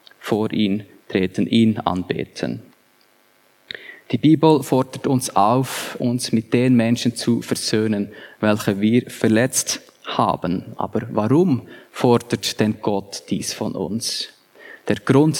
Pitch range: 110-125 Hz